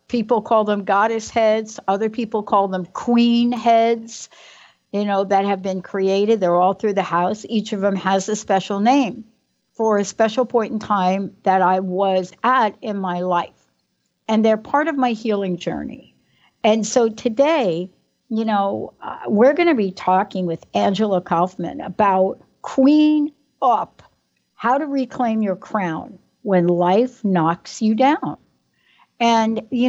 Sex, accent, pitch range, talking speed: female, American, 190-235 Hz, 155 wpm